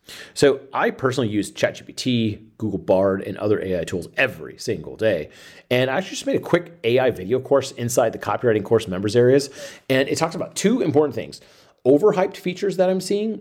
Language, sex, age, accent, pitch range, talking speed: English, male, 30-49, American, 100-135 Hz, 190 wpm